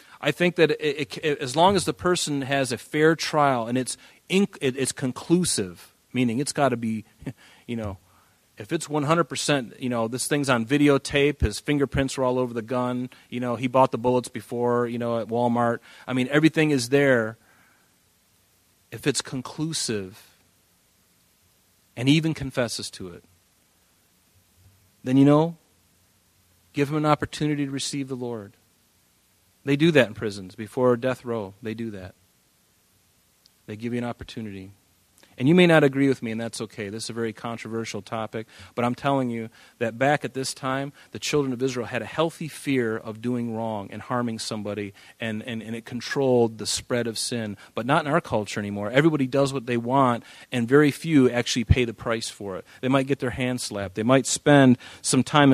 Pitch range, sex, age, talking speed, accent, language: 110-140 Hz, male, 40-59, 185 wpm, American, English